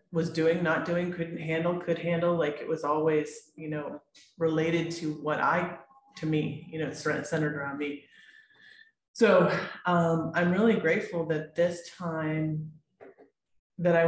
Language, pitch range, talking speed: English, 155-175 Hz, 150 wpm